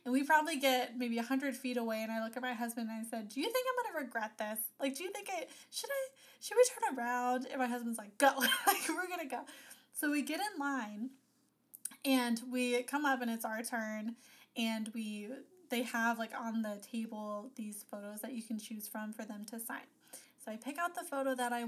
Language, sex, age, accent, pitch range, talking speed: English, female, 10-29, American, 235-280 Hz, 240 wpm